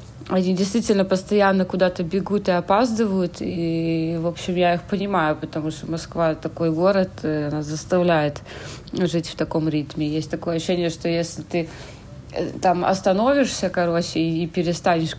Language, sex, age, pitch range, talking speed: Russian, female, 30-49, 160-185 Hz, 140 wpm